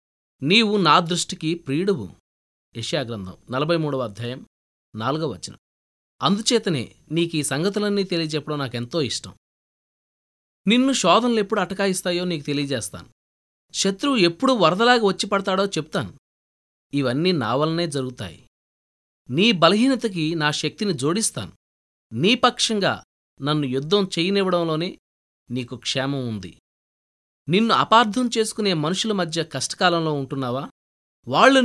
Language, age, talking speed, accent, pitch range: Telugu, 20-39, 95 wpm, native, 120-195 Hz